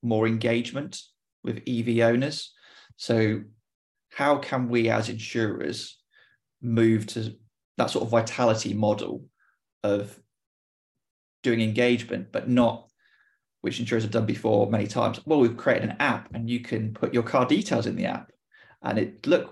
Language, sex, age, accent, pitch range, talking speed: English, male, 30-49, British, 110-125 Hz, 150 wpm